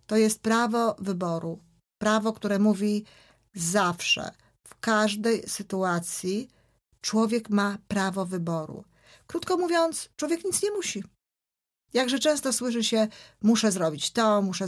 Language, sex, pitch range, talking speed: Polish, female, 190-235 Hz, 120 wpm